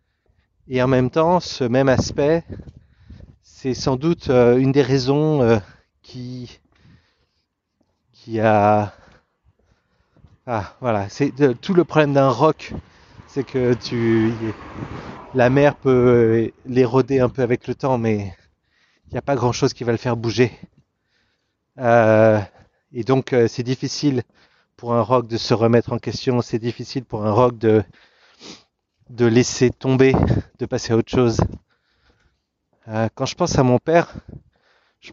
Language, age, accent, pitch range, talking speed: French, 30-49, French, 115-135 Hz, 145 wpm